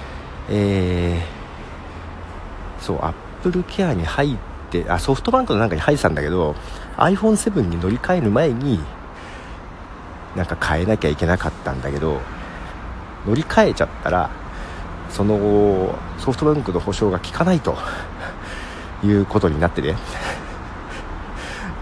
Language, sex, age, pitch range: Japanese, male, 50-69, 80-135 Hz